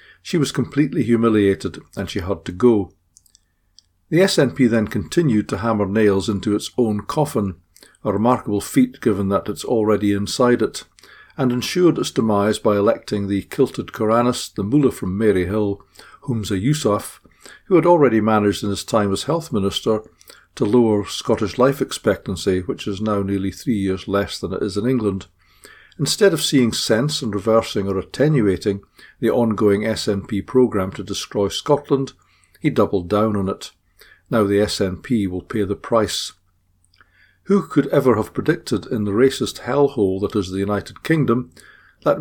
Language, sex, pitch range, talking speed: English, male, 100-125 Hz, 160 wpm